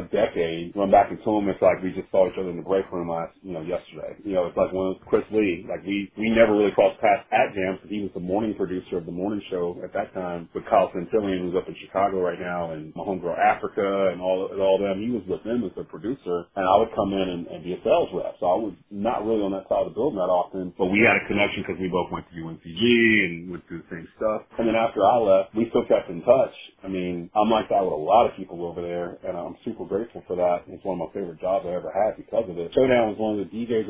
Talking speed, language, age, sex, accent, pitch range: 290 wpm, English, 30-49, male, American, 90-105 Hz